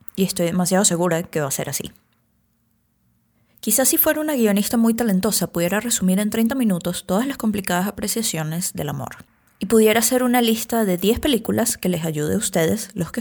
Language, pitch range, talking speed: English, 170-210 Hz, 190 wpm